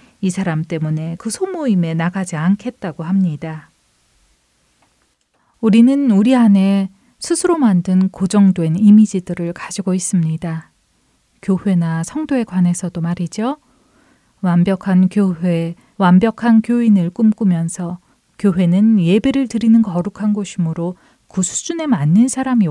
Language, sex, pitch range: Korean, female, 175-230 Hz